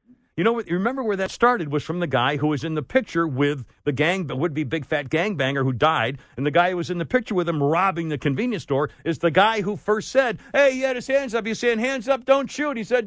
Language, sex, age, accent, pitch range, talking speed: English, male, 60-79, American, 150-230 Hz, 280 wpm